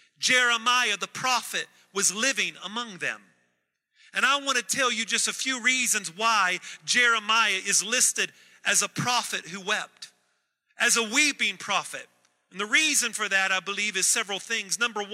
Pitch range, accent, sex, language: 200-245 Hz, American, male, English